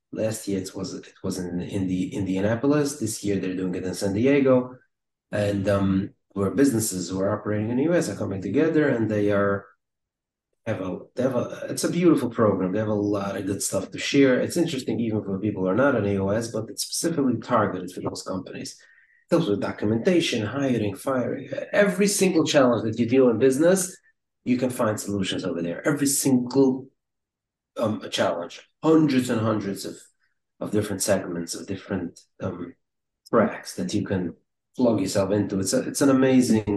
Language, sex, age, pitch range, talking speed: English, male, 30-49, 100-130 Hz, 190 wpm